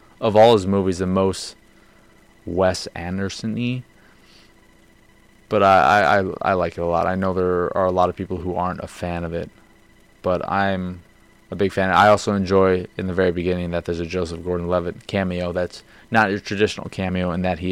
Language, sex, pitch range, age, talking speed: English, male, 90-100 Hz, 20-39, 190 wpm